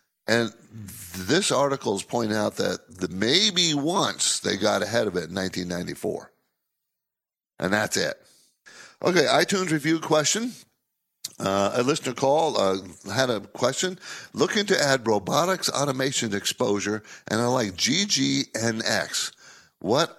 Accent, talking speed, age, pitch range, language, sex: American, 125 wpm, 50-69, 95-135 Hz, English, male